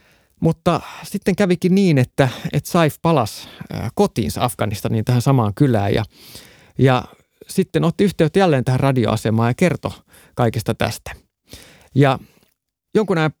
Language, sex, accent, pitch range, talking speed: Finnish, male, native, 120-155 Hz, 130 wpm